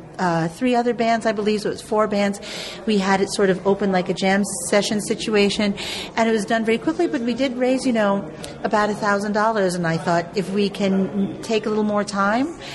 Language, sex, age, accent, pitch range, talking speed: English, female, 40-59, American, 180-210 Hz, 230 wpm